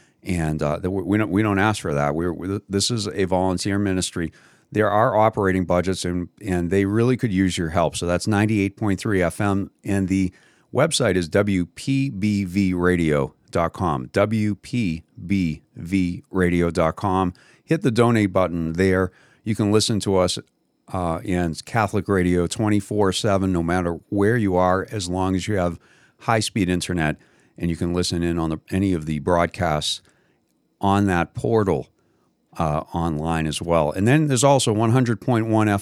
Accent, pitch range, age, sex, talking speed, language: American, 90-110 Hz, 40-59, male, 145 wpm, English